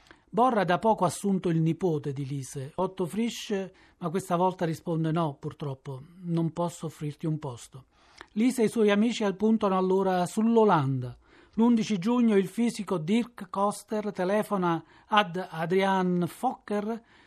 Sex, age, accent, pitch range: male, 40-59, native, 165-210 Hz